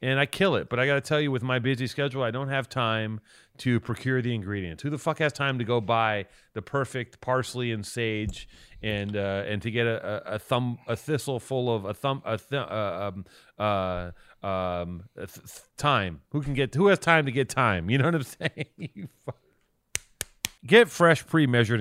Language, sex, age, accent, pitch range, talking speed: English, male, 30-49, American, 115-160 Hz, 210 wpm